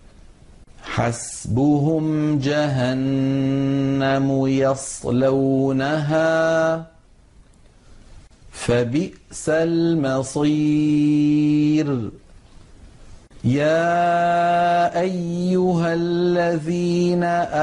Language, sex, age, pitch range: Arabic, male, 40-59, 135-160 Hz